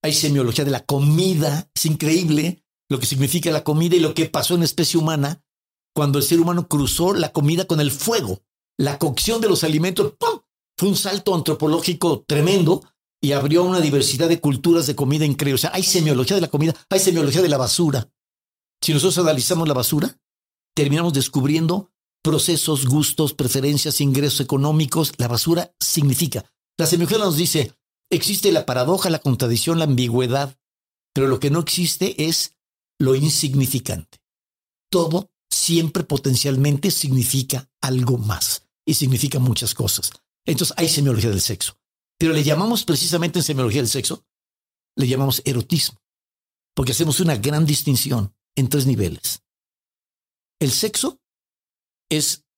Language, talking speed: Spanish, 150 wpm